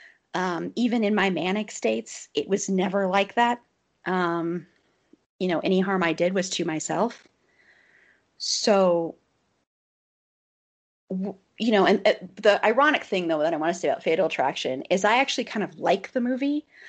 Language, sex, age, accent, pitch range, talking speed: English, female, 30-49, American, 175-215 Hz, 165 wpm